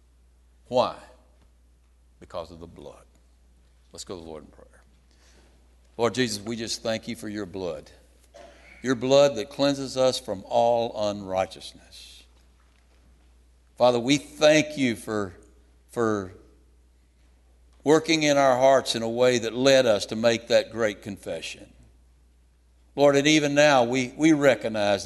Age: 60-79